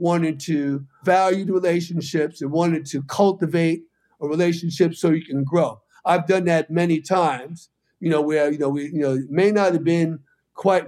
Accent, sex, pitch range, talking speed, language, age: American, male, 155-190 Hz, 190 wpm, English, 50-69